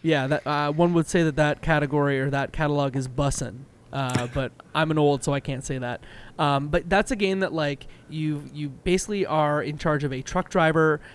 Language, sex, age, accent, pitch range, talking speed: English, male, 20-39, American, 140-170 Hz, 220 wpm